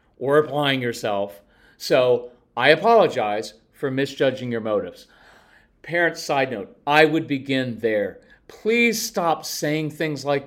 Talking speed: 125 wpm